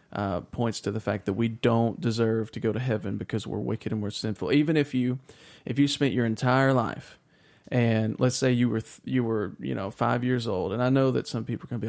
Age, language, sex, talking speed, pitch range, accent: 40-59, English, male, 250 wpm, 115-130 Hz, American